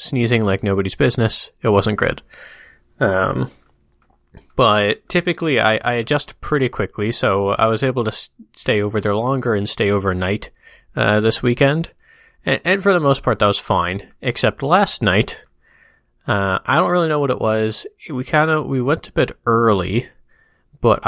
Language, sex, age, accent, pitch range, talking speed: English, male, 20-39, American, 105-135 Hz, 170 wpm